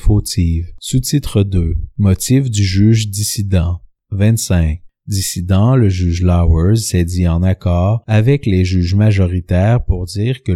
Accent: Canadian